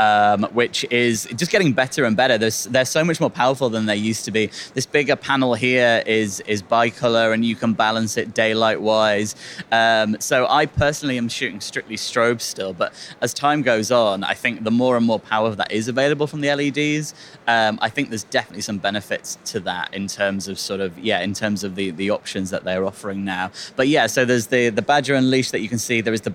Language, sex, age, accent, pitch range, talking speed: English, male, 20-39, British, 105-125 Hz, 225 wpm